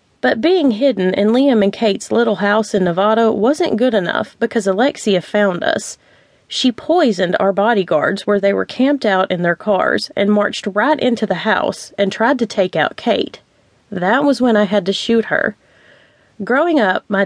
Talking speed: 185 wpm